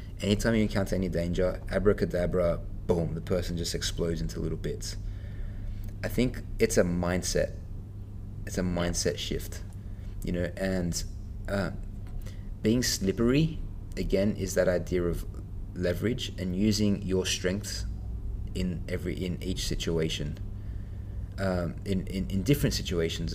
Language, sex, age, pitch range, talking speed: English, male, 20-39, 90-100 Hz, 130 wpm